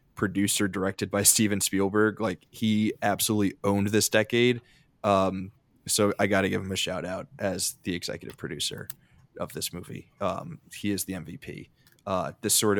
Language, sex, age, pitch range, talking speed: English, male, 20-39, 100-120 Hz, 165 wpm